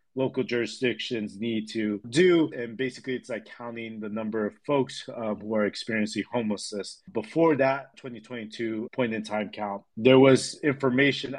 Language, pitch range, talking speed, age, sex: English, 110-130 Hz, 140 wpm, 30-49, male